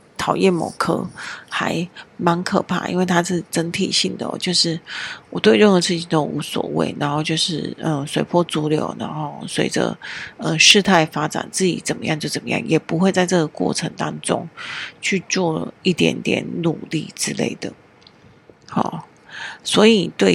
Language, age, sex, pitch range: Chinese, 40-59, female, 160-185 Hz